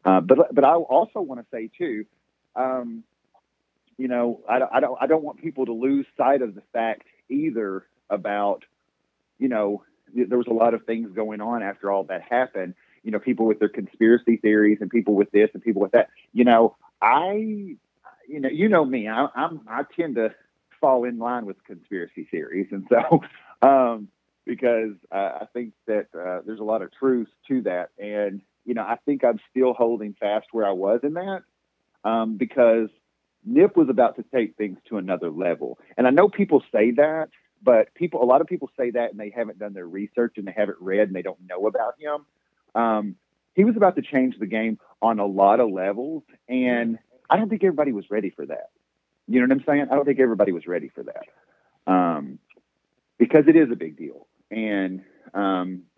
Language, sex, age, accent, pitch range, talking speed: English, male, 40-59, American, 105-135 Hz, 205 wpm